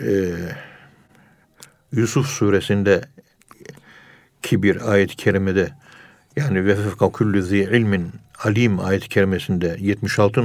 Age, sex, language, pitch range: 60-79, male, Turkish, 100-135 Hz